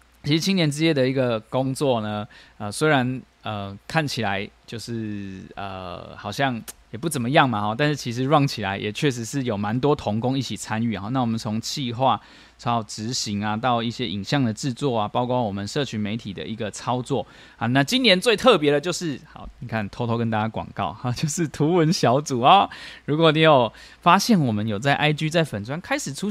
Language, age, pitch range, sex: Chinese, 20-39, 110-150 Hz, male